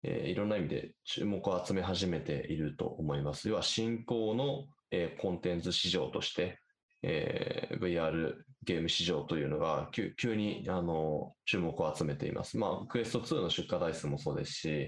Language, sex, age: Japanese, male, 20-39